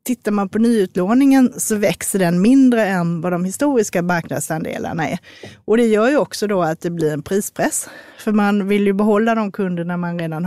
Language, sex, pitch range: Swedish, female, 175-225 Hz